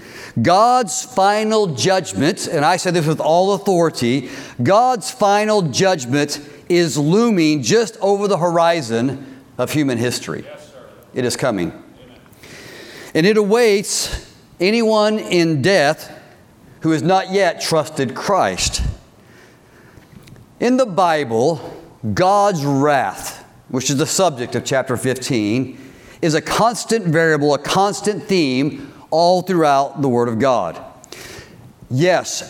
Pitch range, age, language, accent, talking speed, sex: 145-205 Hz, 50-69, English, American, 115 wpm, male